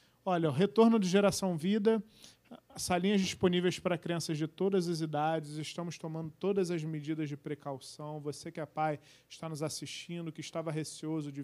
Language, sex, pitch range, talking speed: Portuguese, male, 150-170 Hz, 170 wpm